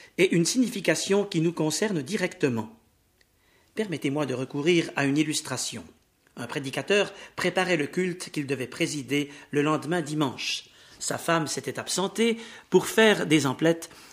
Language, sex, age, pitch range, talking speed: French, male, 50-69, 145-195 Hz, 135 wpm